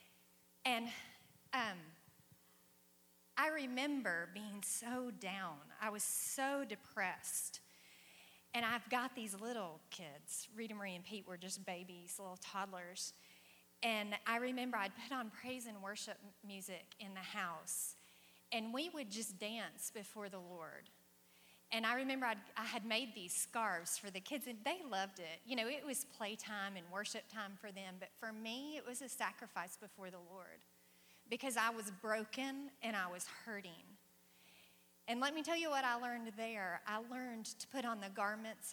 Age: 40-59